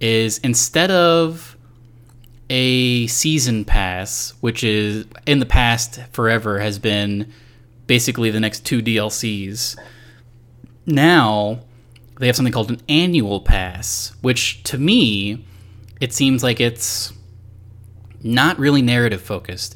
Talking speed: 115 wpm